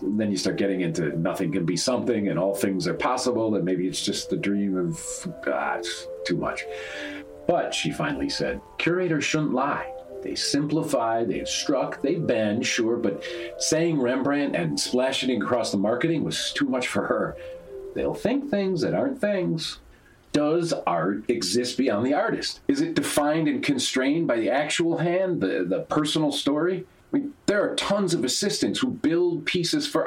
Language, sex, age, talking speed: English, male, 40-59, 180 wpm